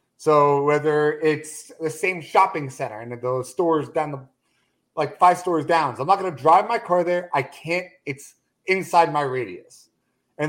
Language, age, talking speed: English, 30-49, 185 wpm